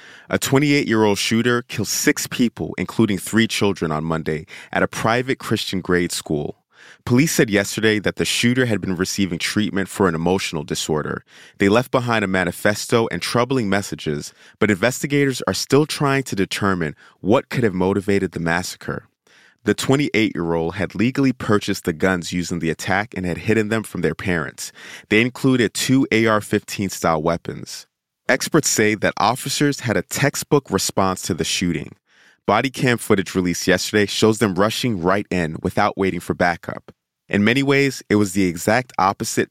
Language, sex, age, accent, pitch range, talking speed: English, male, 30-49, American, 90-120 Hz, 160 wpm